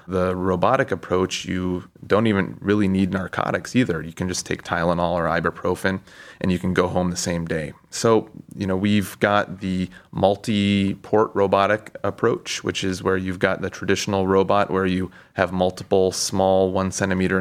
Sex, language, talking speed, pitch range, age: male, English, 170 wpm, 90-100 Hz, 30-49